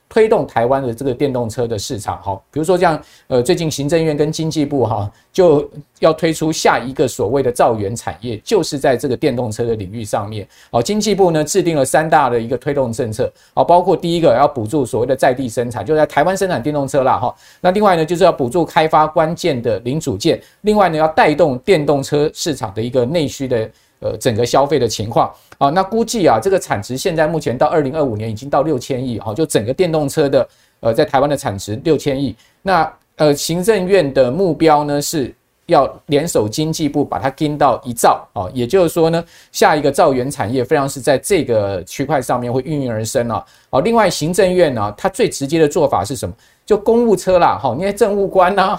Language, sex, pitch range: Chinese, male, 125-170 Hz